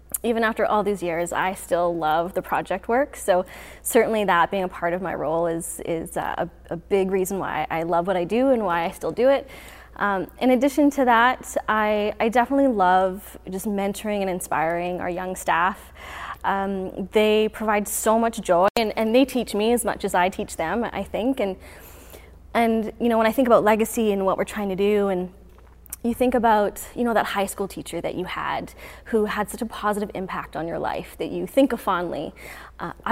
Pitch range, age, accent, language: 185-230 Hz, 20-39, American, English